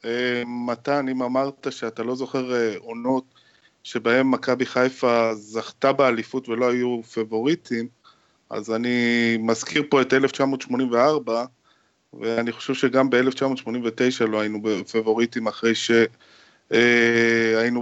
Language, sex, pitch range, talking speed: Hebrew, male, 115-140 Hz, 110 wpm